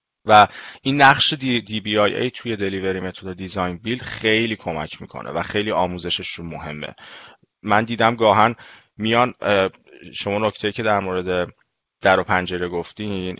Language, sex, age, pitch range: Persian, male, 30-49, 90-115 Hz